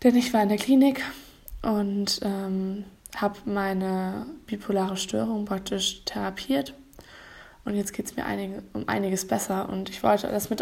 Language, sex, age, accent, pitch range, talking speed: German, female, 20-39, German, 190-210 Hz, 155 wpm